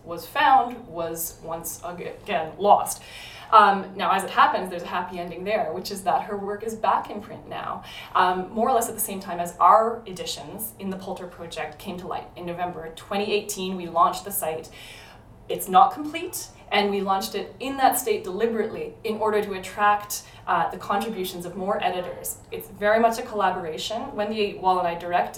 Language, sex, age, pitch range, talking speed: English, female, 20-39, 175-210 Hz, 195 wpm